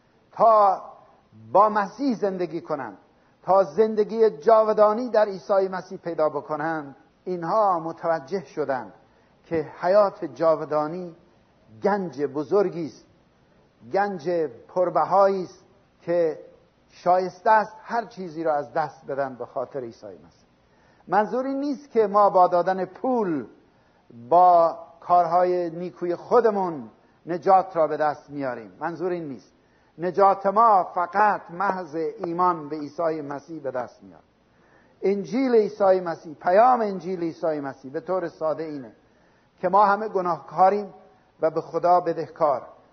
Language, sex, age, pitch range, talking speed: Persian, male, 60-79, 160-205 Hz, 115 wpm